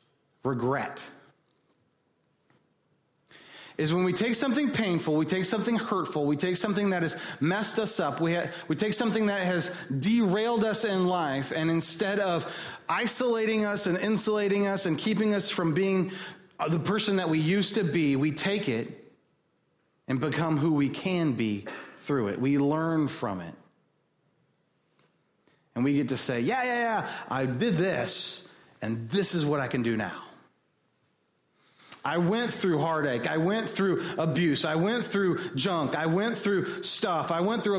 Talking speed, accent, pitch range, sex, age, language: 160 wpm, American, 145-195 Hz, male, 30-49, English